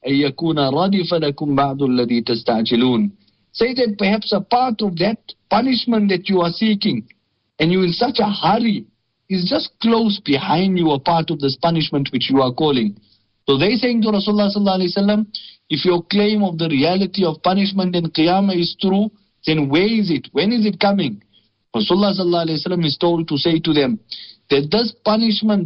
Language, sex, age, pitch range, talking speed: English, male, 50-69, 140-200 Hz, 155 wpm